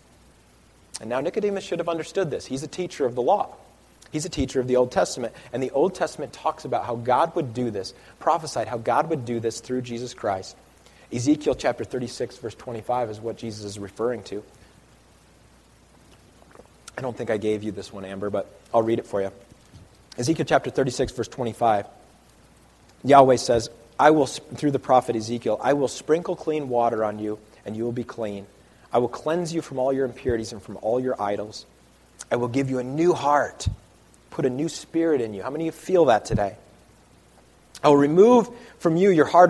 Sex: male